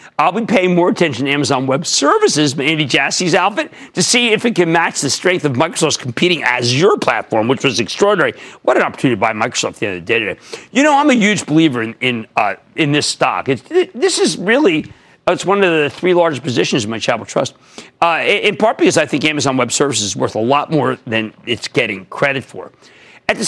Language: English